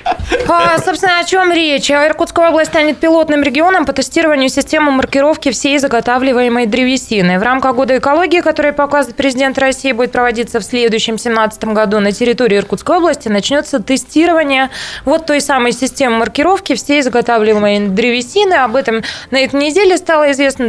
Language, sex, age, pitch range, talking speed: Russian, female, 20-39, 225-285 Hz, 150 wpm